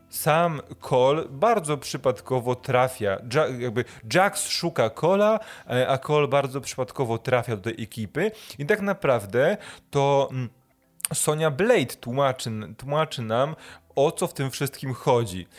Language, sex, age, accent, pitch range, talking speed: Polish, male, 20-39, native, 115-140 Hz, 125 wpm